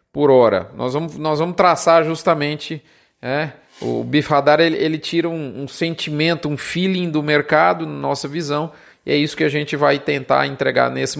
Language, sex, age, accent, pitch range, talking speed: Portuguese, male, 40-59, Brazilian, 160-190 Hz, 175 wpm